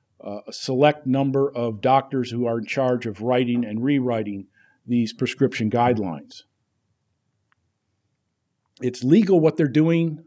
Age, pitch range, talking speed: 50-69, 120-150 Hz, 125 wpm